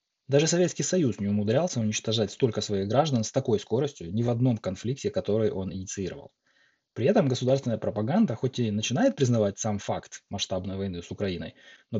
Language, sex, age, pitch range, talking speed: Ukrainian, male, 20-39, 110-145 Hz, 170 wpm